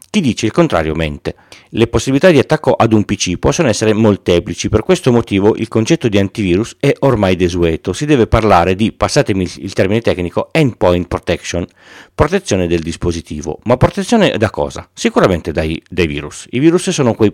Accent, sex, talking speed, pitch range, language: native, male, 175 wpm, 95-125 Hz, Italian